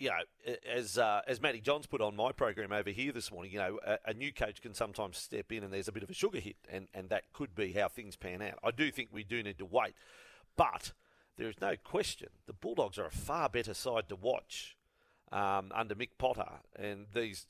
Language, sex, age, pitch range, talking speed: English, male, 40-59, 105-145 Hz, 245 wpm